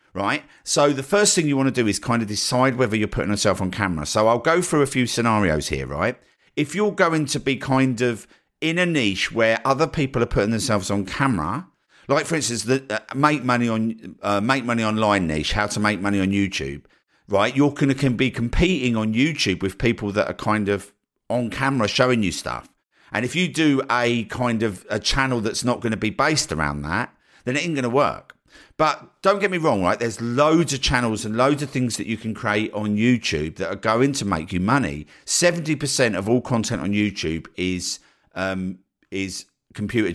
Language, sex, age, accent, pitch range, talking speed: English, male, 50-69, British, 105-140 Hz, 215 wpm